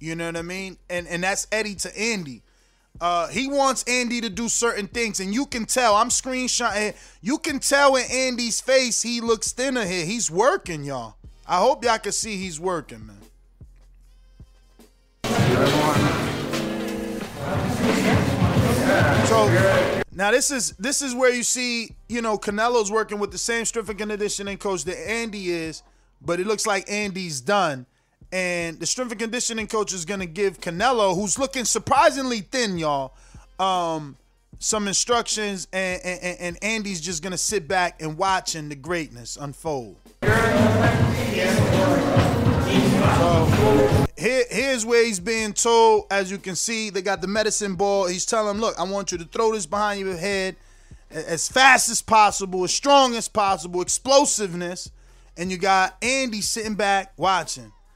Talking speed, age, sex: 155 wpm, 20-39, male